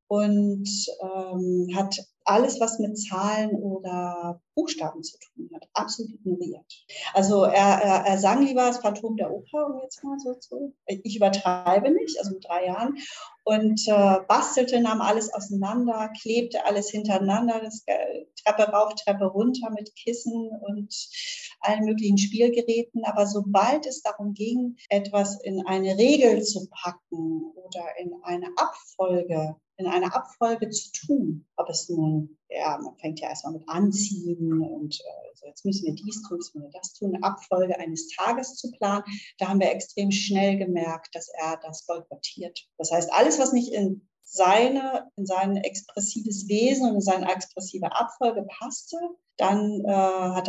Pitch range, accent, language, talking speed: 180-225 Hz, German, German, 160 wpm